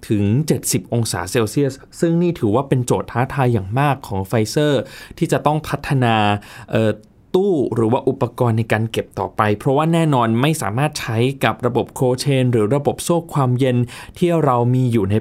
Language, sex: Thai, male